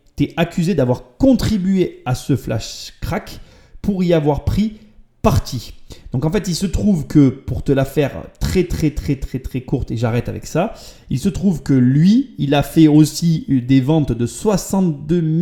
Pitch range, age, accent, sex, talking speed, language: 125-165 Hz, 30-49, French, male, 180 wpm, French